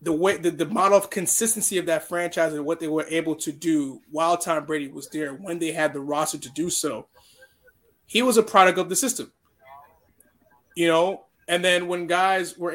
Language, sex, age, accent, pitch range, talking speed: English, male, 20-39, American, 160-195 Hz, 205 wpm